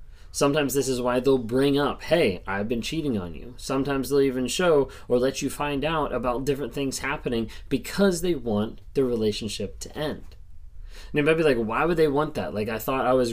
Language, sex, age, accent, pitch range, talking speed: English, male, 20-39, American, 100-140 Hz, 215 wpm